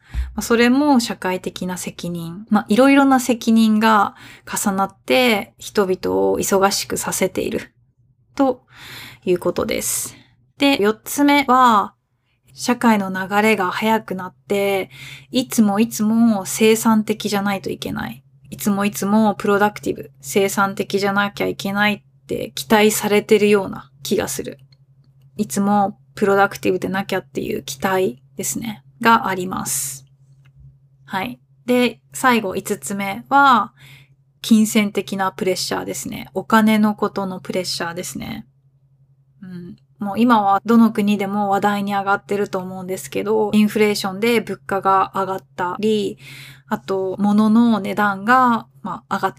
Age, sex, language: 20-39, female, Japanese